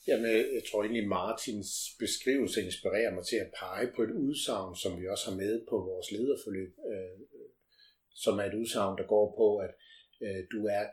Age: 60-79